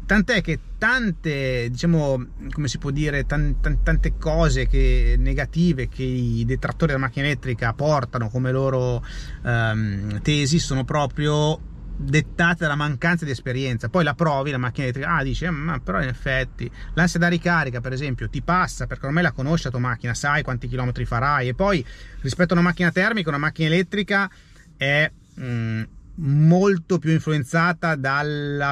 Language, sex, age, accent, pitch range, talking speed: Italian, male, 30-49, native, 130-170 Hz, 165 wpm